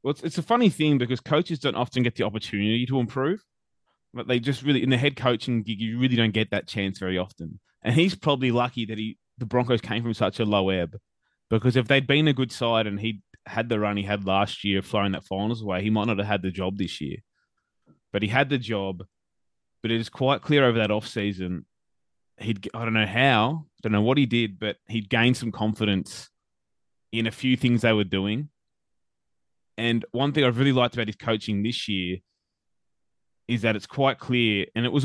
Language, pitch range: English, 100-125 Hz